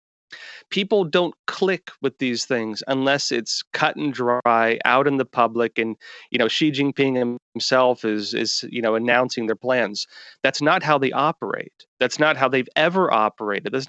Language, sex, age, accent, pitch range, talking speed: English, male, 30-49, American, 125-155 Hz, 175 wpm